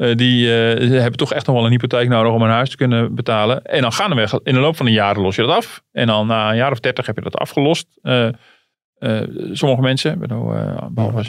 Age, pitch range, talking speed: 40-59, 105-125 Hz, 270 wpm